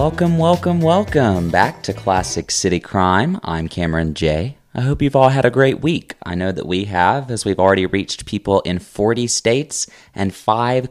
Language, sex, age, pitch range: English, male, 30-49, 90-125 Hz